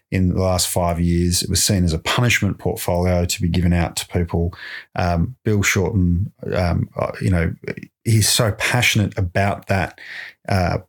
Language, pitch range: English, 90-110 Hz